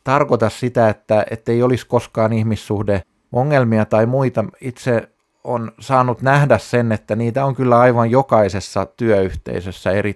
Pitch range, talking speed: 100-125 Hz, 130 wpm